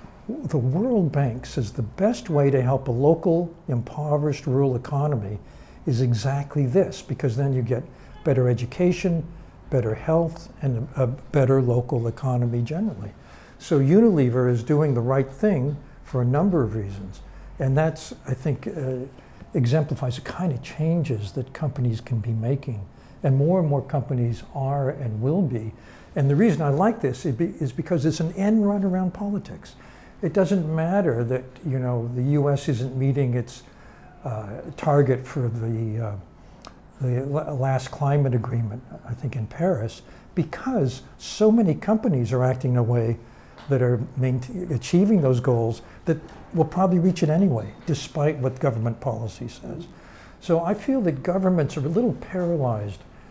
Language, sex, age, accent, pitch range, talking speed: English, male, 60-79, American, 125-160 Hz, 160 wpm